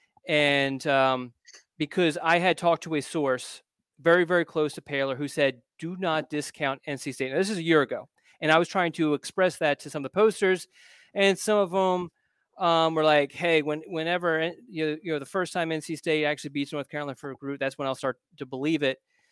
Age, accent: 30-49, American